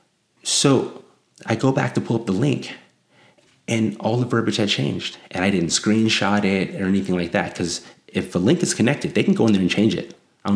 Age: 30-49